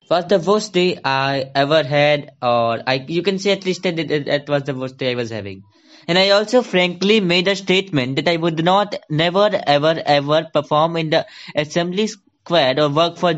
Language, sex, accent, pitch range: English, male, Indian, 135-170 Hz